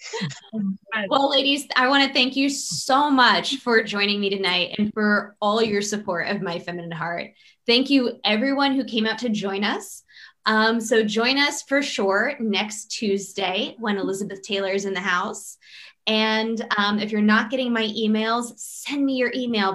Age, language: 20-39, English